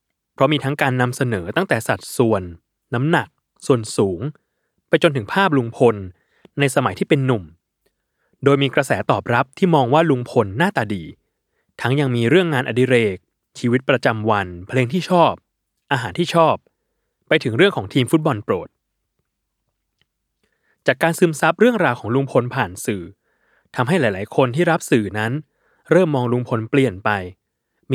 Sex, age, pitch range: male, 20-39, 115-150 Hz